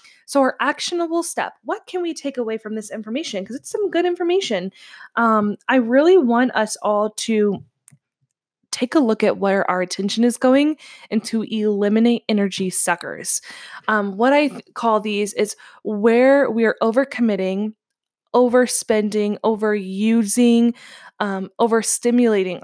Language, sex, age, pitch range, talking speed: English, female, 20-39, 200-245 Hz, 140 wpm